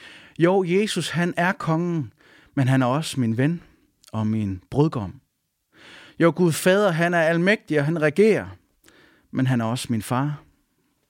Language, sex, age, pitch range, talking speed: English, male, 30-49, 135-175 Hz, 155 wpm